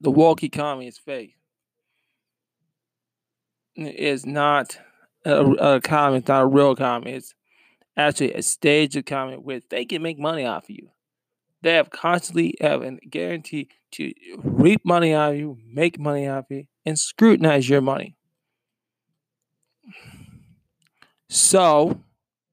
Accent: American